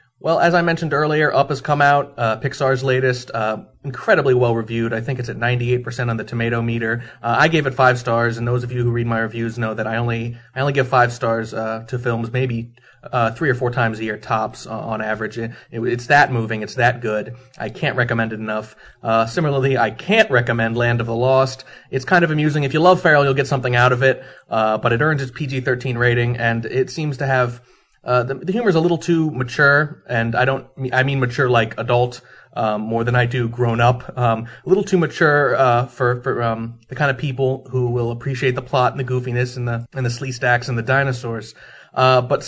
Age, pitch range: 30-49, 115-145 Hz